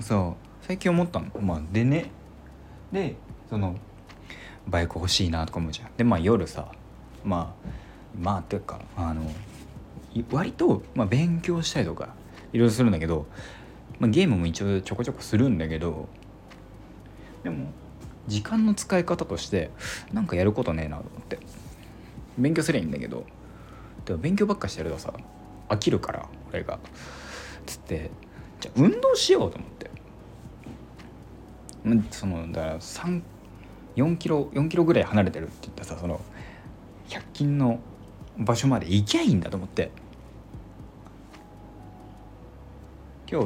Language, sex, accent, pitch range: Japanese, male, native, 85-125 Hz